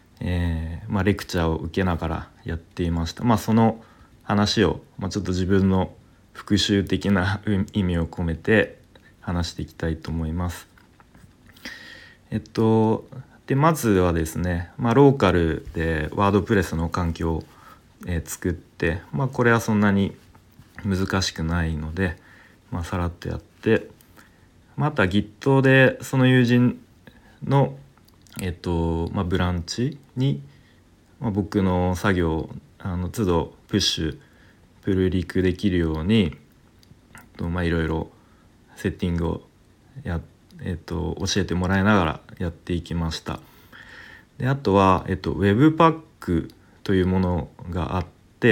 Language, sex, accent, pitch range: Japanese, male, native, 85-105 Hz